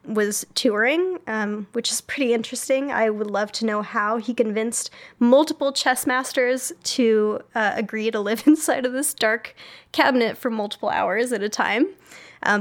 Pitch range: 225-295 Hz